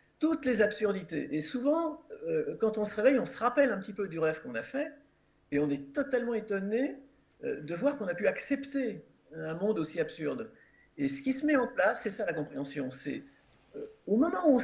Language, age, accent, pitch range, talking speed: French, 50-69, French, 160-270 Hz, 220 wpm